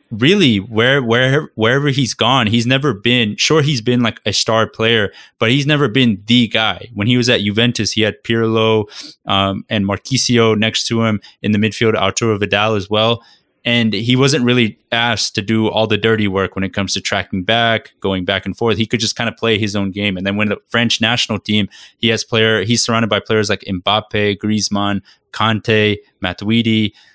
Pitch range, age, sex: 105-125 Hz, 20-39, male